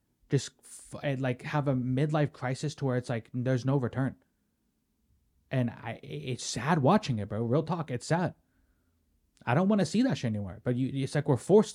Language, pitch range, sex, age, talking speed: English, 125-160 Hz, male, 20-39, 200 wpm